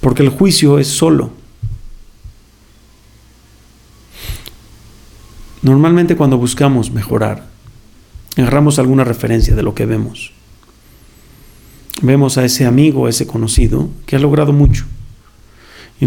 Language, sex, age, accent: Spanish, male, 40-59, Mexican